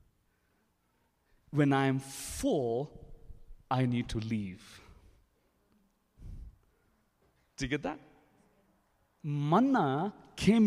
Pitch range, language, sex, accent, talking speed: 135-205 Hz, English, male, Indian, 80 wpm